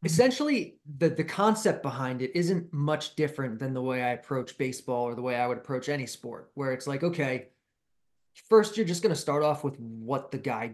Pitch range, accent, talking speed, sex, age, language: 125-160 Hz, American, 210 wpm, male, 30-49, English